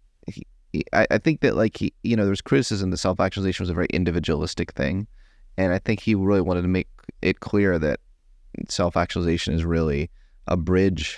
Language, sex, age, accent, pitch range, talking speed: English, male, 30-49, American, 85-95 Hz, 195 wpm